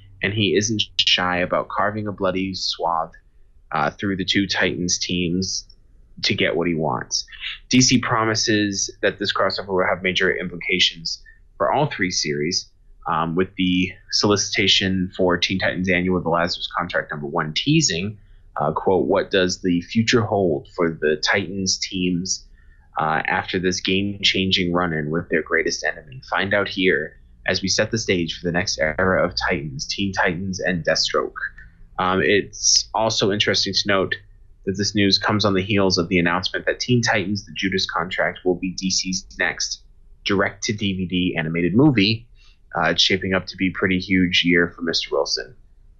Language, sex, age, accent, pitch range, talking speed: English, male, 20-39, American, 90-100 Hz, 165 wpm